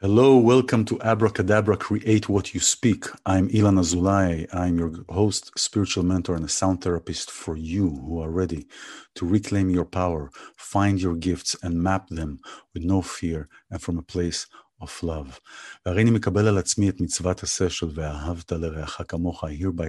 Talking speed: 140 wpm